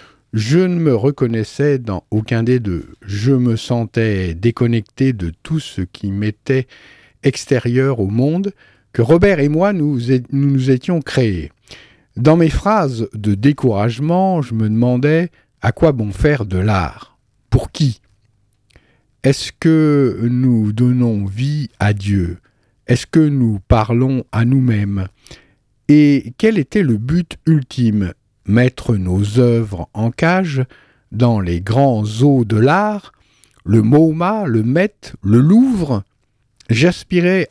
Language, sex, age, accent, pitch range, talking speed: French, male, 50-69, French, 105-150 Hz, 130 wpm